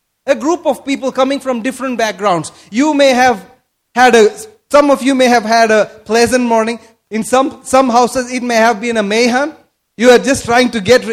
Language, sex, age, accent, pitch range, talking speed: English, male, 30-49, Indian, 205-285 Hz, 205 wpm